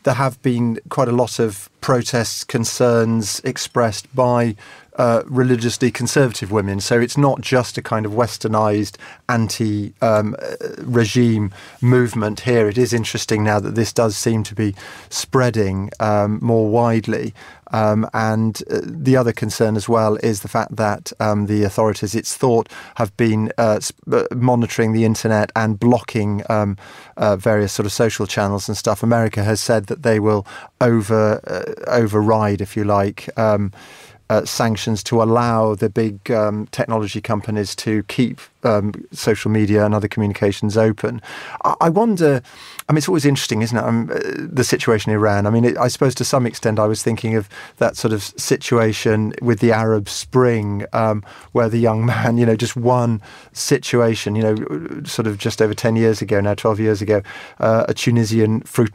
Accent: British